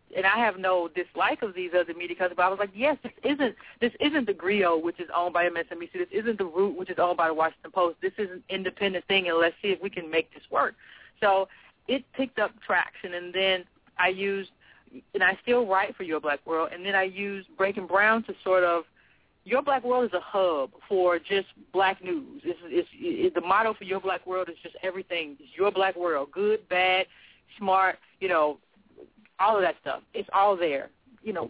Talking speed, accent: 225 wpm, American